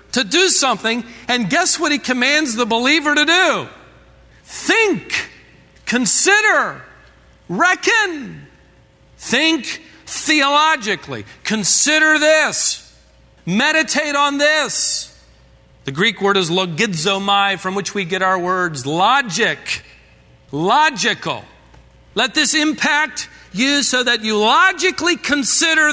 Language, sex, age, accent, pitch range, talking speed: English, male, 50-69, American, 215-300 Hz, 100 wpm